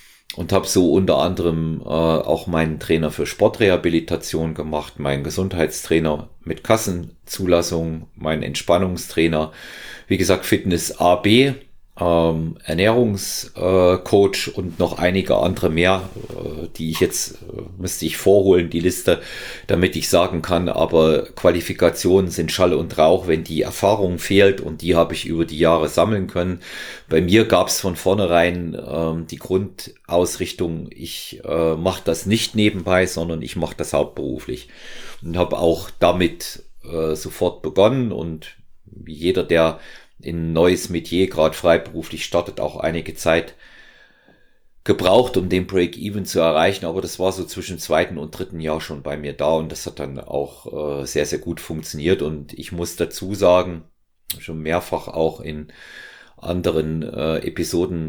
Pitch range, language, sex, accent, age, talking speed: 80-90 Hz, German, male, German, 40-59, 150 wpm